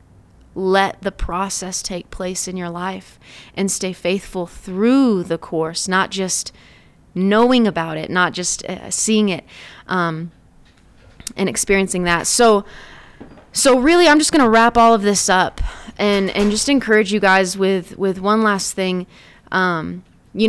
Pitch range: 180-215 Hz